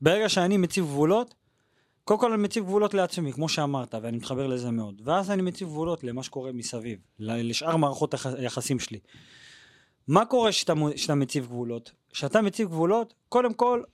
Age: 30-49